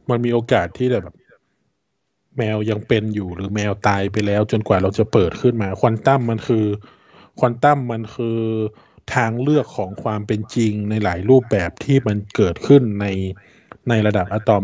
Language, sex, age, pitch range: Thai, male, 20-39, 105-125 Hz